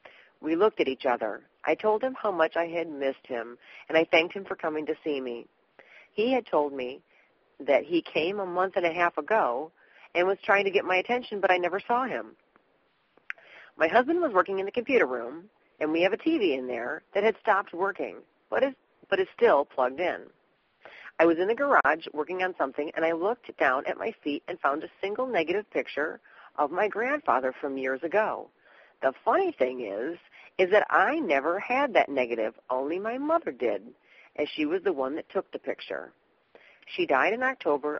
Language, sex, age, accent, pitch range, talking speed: English, female, 40-59, American, 155-235 Hz, 200 wpm